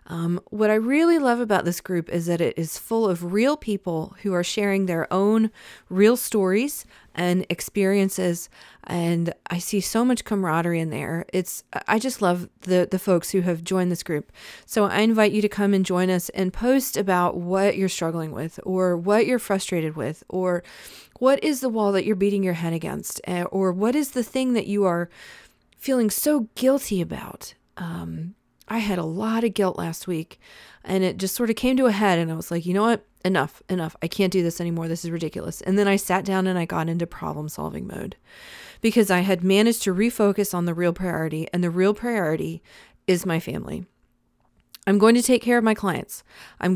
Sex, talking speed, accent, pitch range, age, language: female, 205 wpm, American, 175-215 Hz, 30-49, English